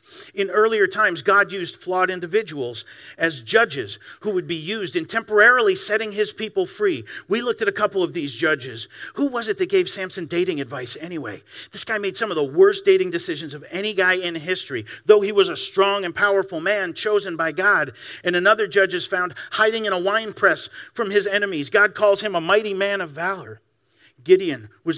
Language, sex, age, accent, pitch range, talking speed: English, male, 50-69, American, 165-215 Hz, 200 wpm